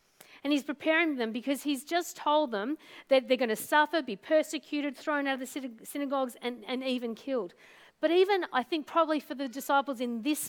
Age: 50-69